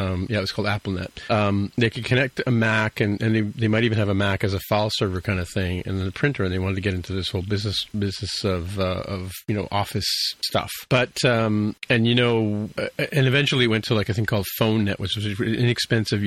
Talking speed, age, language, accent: 250 wpm, 40-59, English, American